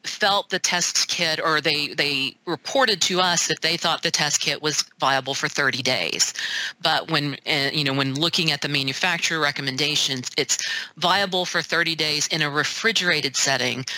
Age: 40-59